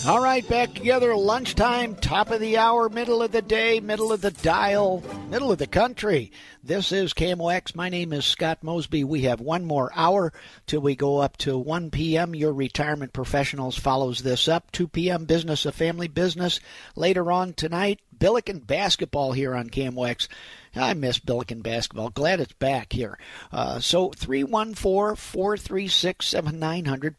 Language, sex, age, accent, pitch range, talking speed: English, male, 50-69, American, 140-180 Hz, 160 wpm